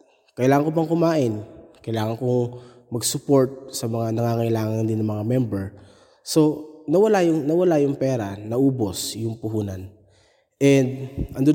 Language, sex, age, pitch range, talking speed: Filipino, male, 20-39, 110-135 Hz, 130 wpm